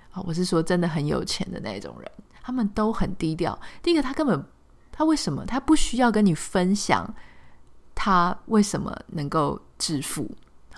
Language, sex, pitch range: Chinese, female, 165-230 Hz